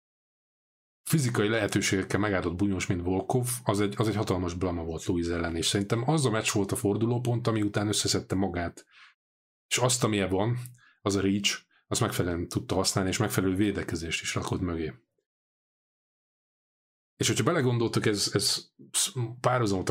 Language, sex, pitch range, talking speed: Hungarian, male, 90-115 Hz, 150 wpm